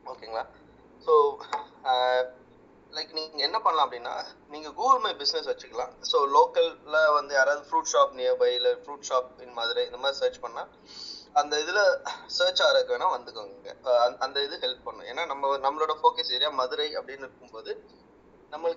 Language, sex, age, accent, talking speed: English, male, 20-39, Indian, 125 wpm